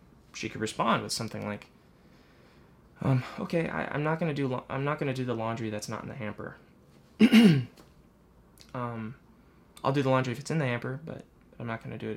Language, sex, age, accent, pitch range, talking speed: English, male, 20-39, American, 110-155 Hz, 195 wpm